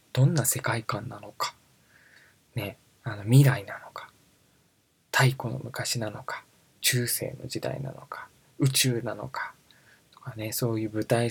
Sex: male